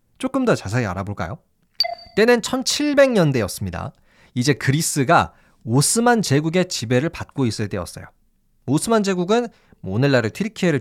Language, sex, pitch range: Korean, male, 110-185 Hz